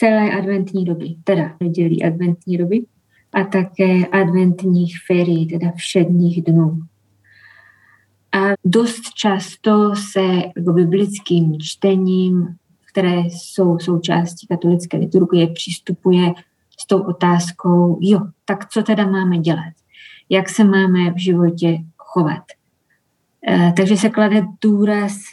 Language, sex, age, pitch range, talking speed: Czech, female, 20-39, 175-205 Hz, 110 wpm